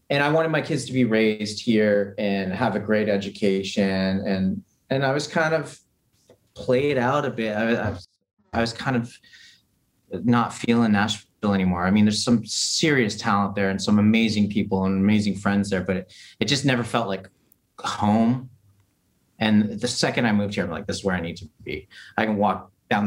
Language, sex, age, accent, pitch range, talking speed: English, male, 30-49, American, 95-115 Hz, 200 wpm